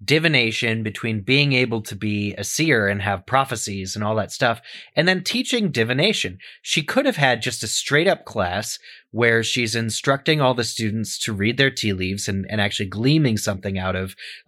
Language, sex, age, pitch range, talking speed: English, male, 30-49, 100-125 Hz, 190 wpm